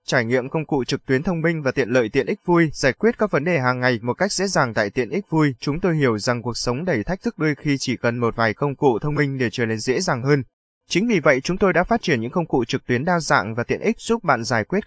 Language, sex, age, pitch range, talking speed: Vietnamese, male, 20-39, 125-170 Hz, 305 wpm